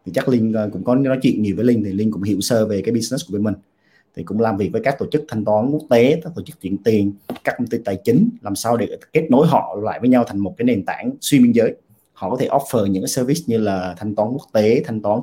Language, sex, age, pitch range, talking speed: Vietnamese, male, 30-49, 100-135 Hz, 290 wpm